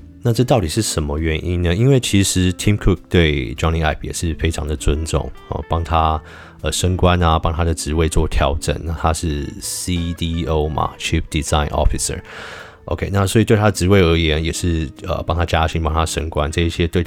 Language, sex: Chinese, male